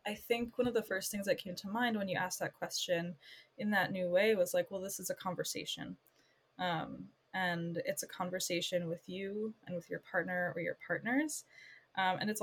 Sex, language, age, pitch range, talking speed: female, English, 20-39, 170-200 Hz, 210 wpm